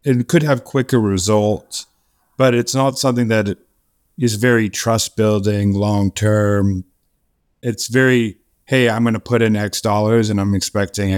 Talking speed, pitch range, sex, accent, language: 145 wpm, 100-115 Hz, male, American, English